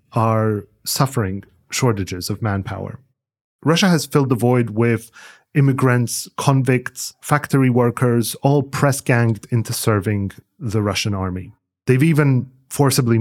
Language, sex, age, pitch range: English, male, 30-49, 105-135 Hz